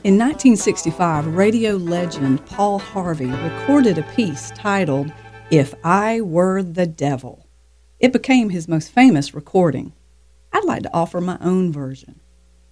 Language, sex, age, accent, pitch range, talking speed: English, female, 50-69, American, 145-220 Hz, 130 wpm